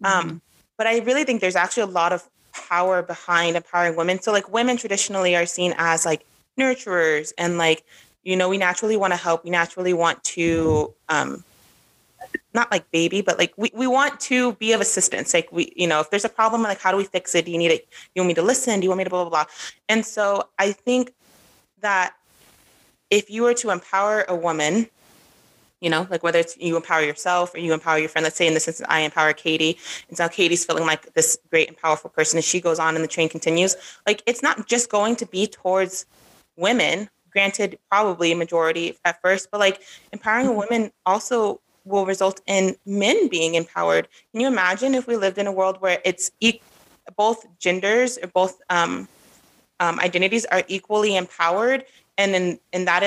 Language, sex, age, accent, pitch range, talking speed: English, female, 30-49, American, 170-215 Hz, 210 wpm